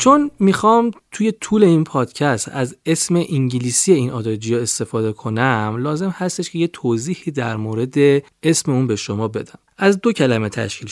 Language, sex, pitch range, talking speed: Persian, male, 120-175 Hz, 160 wpm